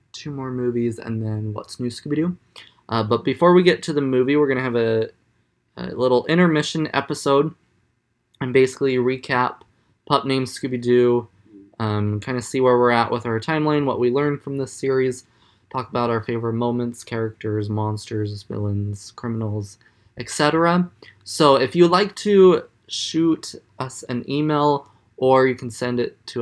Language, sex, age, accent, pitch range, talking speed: English, male, 20-39, American, 110-140 Hz, 165 wpm